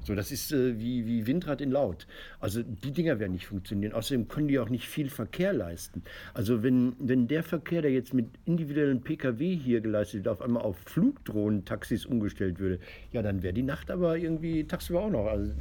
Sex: male